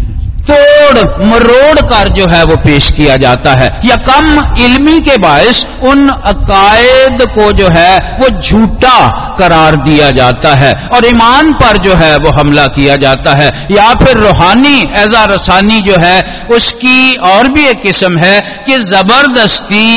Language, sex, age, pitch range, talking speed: Hindi, male, 50-69, 125-195 Hz, 155 wpm